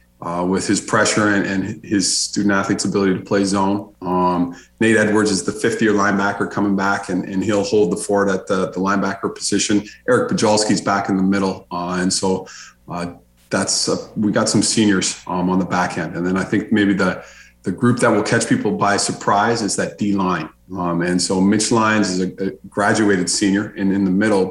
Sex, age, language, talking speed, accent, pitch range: male, 40-59, English, 215 wpm, American, 90-110 Hz